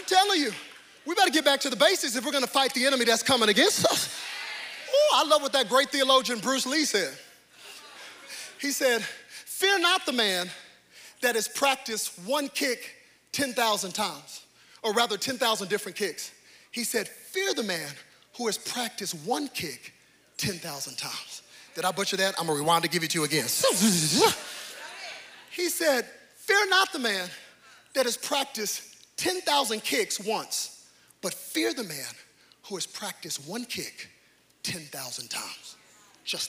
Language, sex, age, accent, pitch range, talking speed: English, male, 40-59, American, 180-280 Hz, 160 wpm